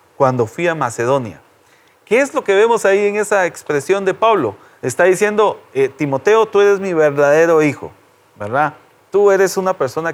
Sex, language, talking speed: male, Spanish, 170 wpm